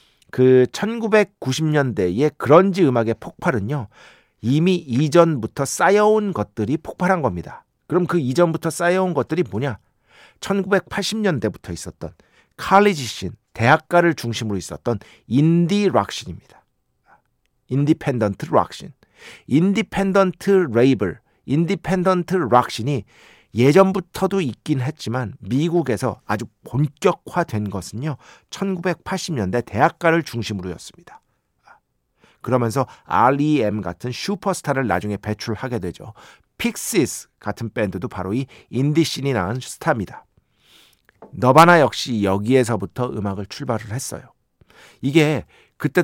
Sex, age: male, 50-69